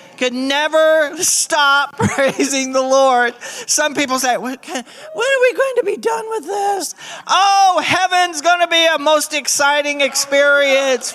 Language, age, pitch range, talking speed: English, 40-59, 260-360 Hz, 140 wpm